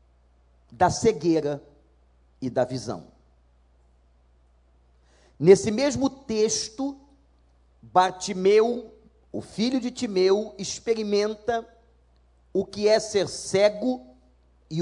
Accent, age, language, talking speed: Brazilian, 40-59, Portuguese, 80 wpm